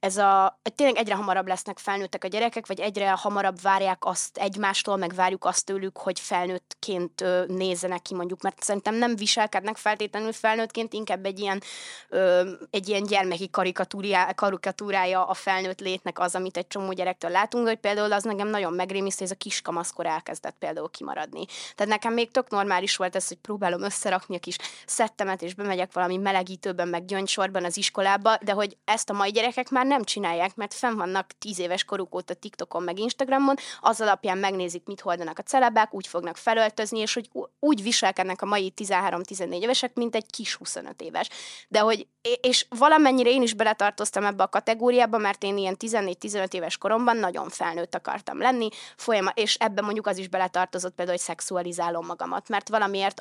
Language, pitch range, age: Hungarian, 185-215 Hz, 20-39